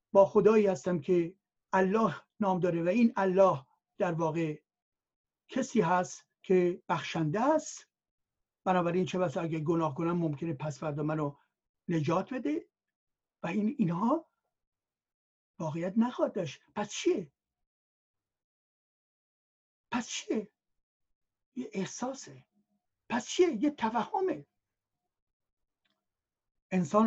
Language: Persian